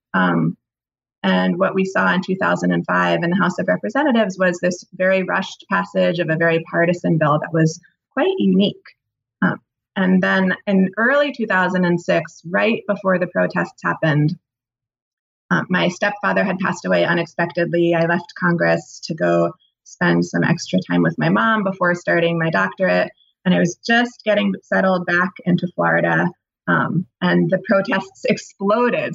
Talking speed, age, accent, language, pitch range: 150 wpm, 20-39, American, English, 165-200 Hz